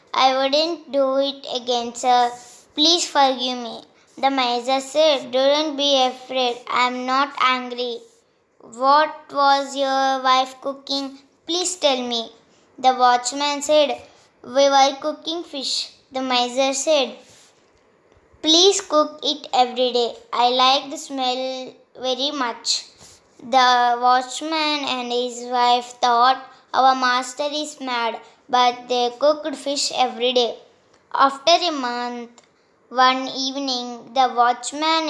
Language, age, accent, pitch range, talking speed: Telugu, 20-39, native, 250-285 Hz, 120 wpm